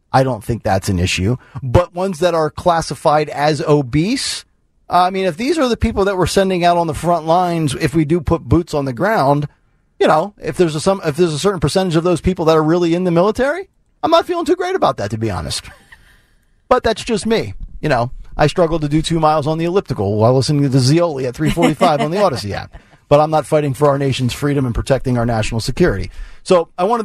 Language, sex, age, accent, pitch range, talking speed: English, male, 40-59, American, 125-170 Hz, 240 wpm